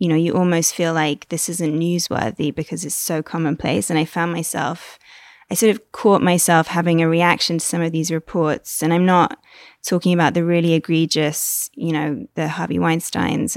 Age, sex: 20-39, female